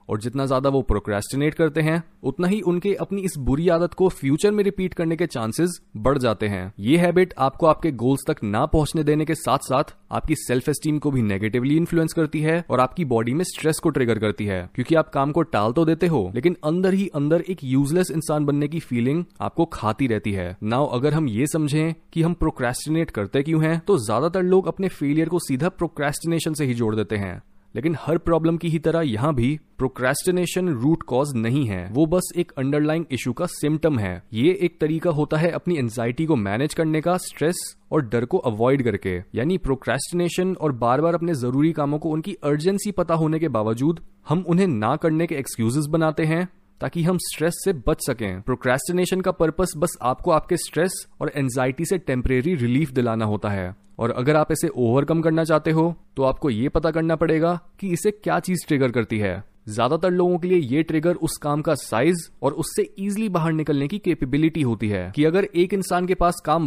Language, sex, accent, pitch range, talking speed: Hindi, male, native, 130-170 Hz, 205 wpm